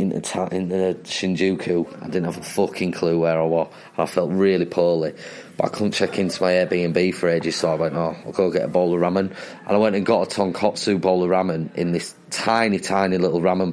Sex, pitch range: male, 90-100 Hz